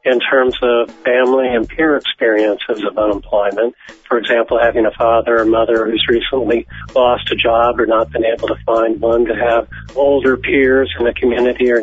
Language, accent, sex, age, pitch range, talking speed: English, American, male, 50-69, 115-145 Hz, 185 wpm